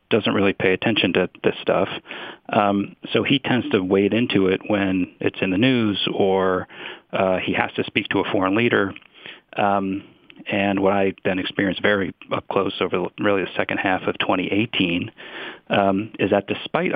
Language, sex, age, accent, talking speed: English, male, 40-59, American, 175 wpm